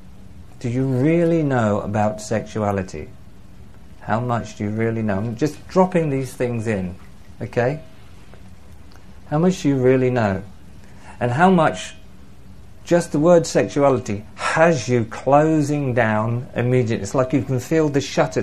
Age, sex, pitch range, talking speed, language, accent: 50-69, male, 95-130 Hz, 145 wpm, English, British